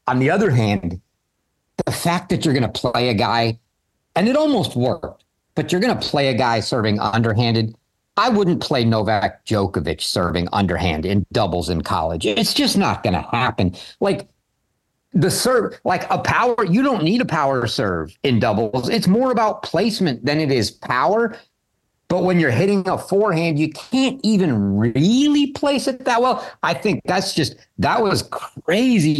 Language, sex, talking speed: English, male, 175 wpm